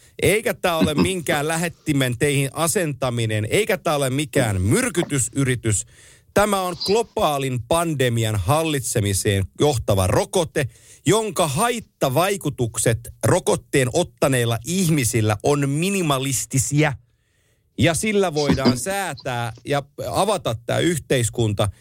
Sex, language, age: male, Finnish, 50-69